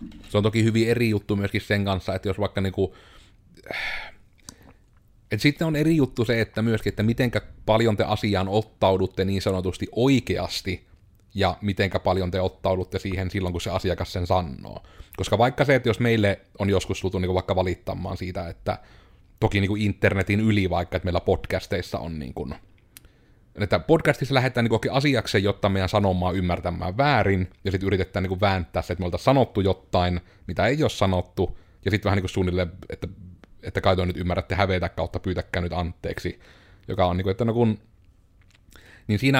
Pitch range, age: 90-105 Hz, 30-49